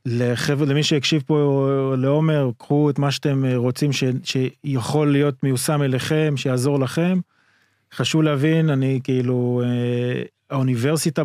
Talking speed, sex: 125 wpm, male